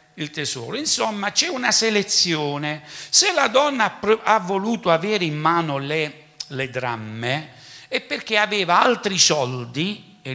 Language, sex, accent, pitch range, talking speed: Italian, male, native, 130-200 Hz, 135 wpm